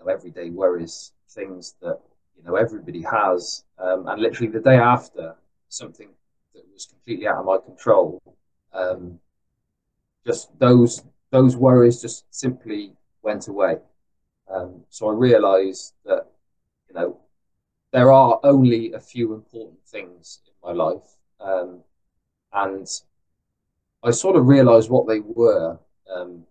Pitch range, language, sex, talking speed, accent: 95-120 Hz, English, male, 130 wpm, British